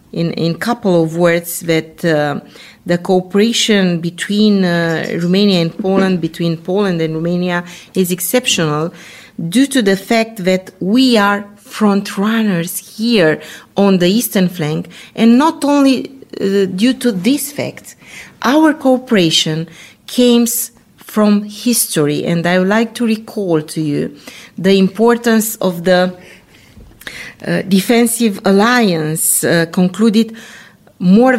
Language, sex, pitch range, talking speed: English, female, 170-225 Hz, 120 wpm